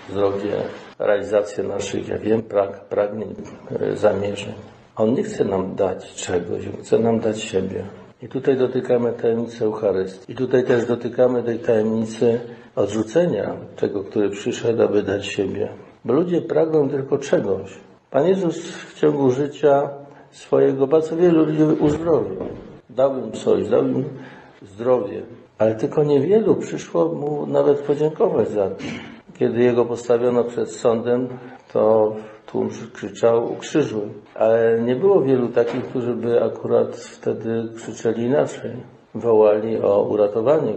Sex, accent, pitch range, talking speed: male, native, 110-140 Hz, 130 wpm